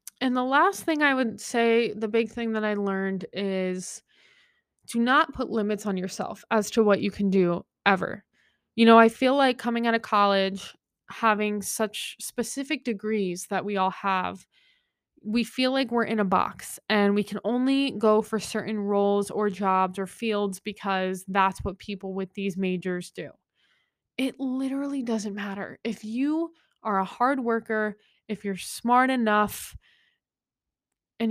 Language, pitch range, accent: English, 200-240 Hz, American